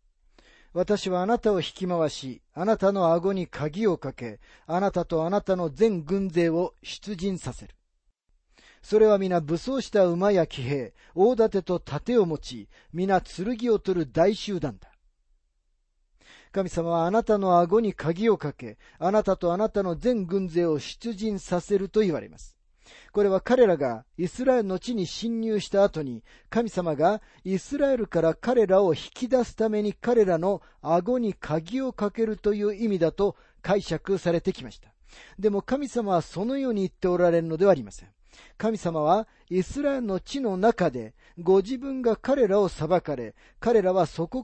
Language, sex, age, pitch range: Japanese, male, 40-59, 165-215 Hz